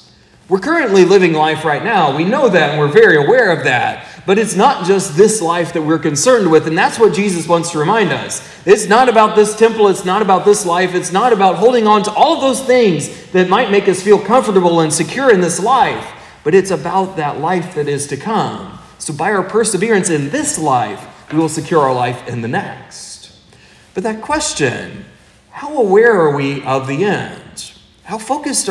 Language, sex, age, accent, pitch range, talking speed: English, male, 30-49, American, 165-220 Hz, 210 wpm